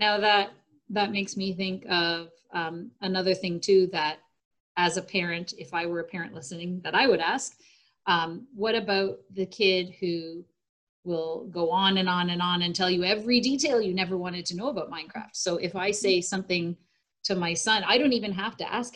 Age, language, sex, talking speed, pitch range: 30-49, English, female, 205 wpm, 185-295 Hz